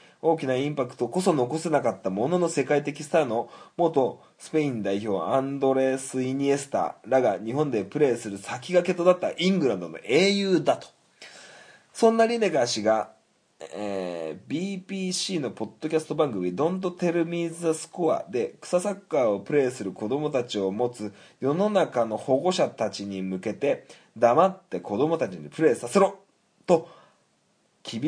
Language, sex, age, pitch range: Japanese, male, 20-39, 130-190 Hz